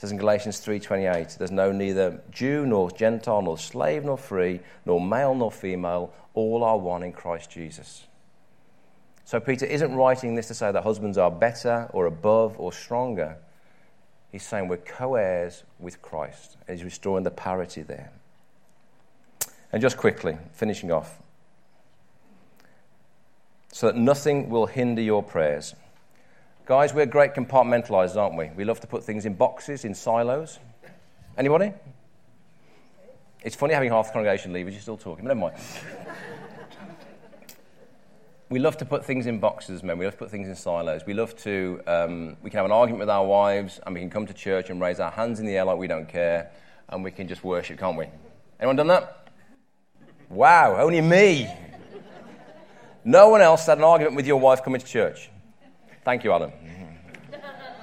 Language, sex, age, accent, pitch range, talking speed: English, male, 40-59, British, 90-130 Hz, 170 wpm